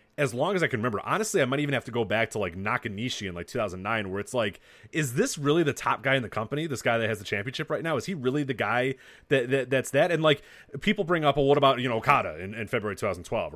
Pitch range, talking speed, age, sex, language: 110-155 Hz, 285 wpm, 30-49, male, English